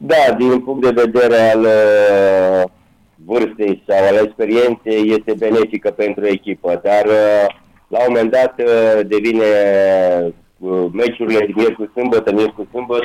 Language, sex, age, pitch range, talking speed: Romanian, male, 30-49, 100-115 Hz, 140 wpm